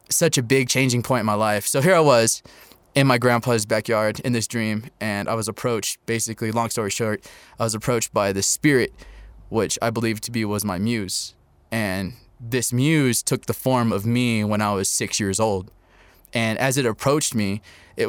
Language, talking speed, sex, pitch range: English, 200 wpm, male, 105-130 Hz